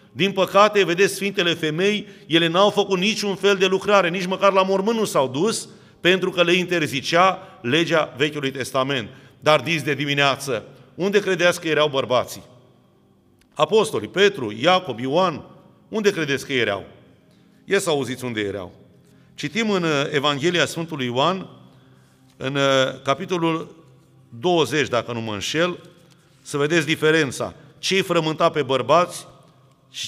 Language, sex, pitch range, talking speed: Romanian, male, 135-185 Hz, 135 wpm